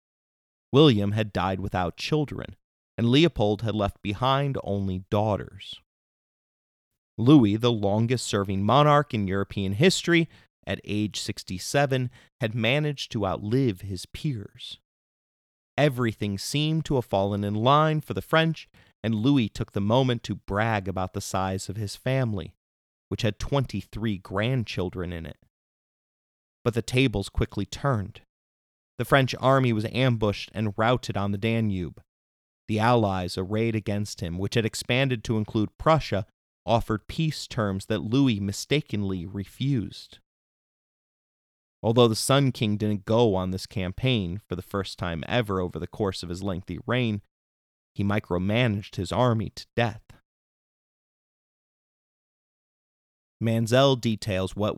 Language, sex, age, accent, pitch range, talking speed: English, male, 30-49, American, 95-125 Hz, 130 wpm